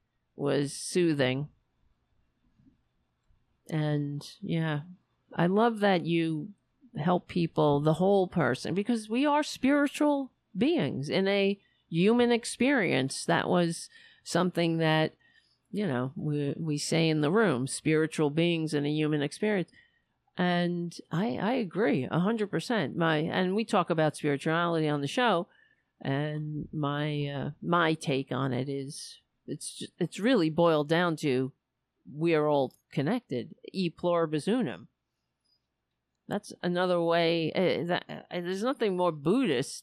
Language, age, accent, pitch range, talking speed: English, 50-69, American, 150-210 Hz, 135 wpm